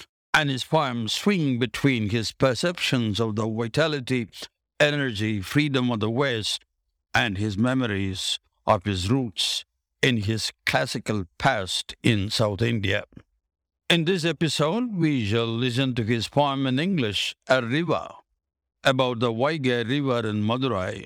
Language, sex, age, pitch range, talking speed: English, male, 60-79, 110-145 Hz, 135 wpm